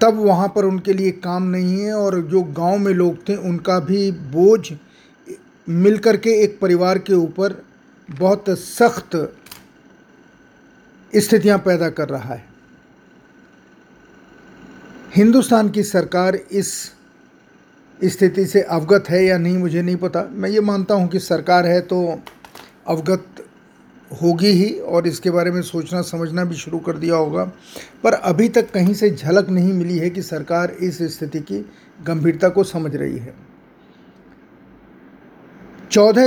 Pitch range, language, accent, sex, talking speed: 170-195 Hz, Hindi, native, male, 145 wpm